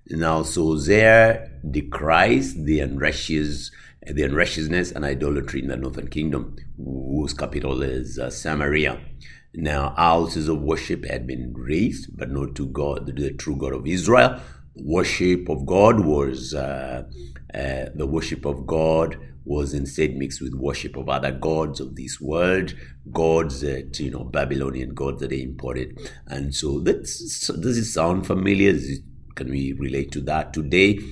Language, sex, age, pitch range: English, male, 60-79, 65-80 Hz